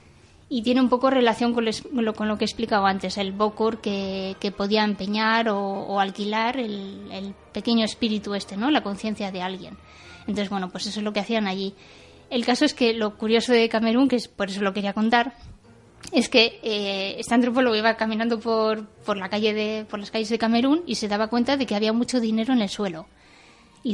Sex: female